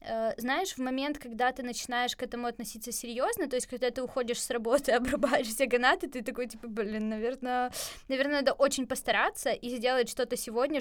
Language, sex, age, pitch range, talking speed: Ukrainian, female, 20-39, 230-275 Hz, 185 wpm